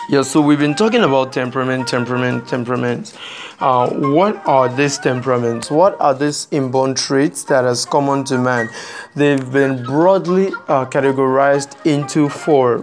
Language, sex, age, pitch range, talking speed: English, male, 20-39, 130-150 Hz, 145 wpm